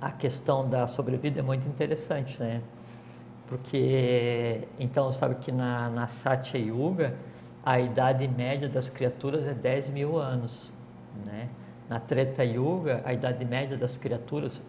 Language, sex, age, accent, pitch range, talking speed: Portuguese, male, 60-79, Brazilian, 120-140 Hz, 140 wpm